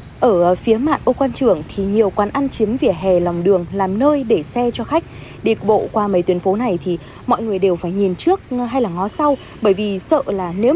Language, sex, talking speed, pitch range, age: Vietnamese, female, 245 wpm, 185-250 Hz, 20-39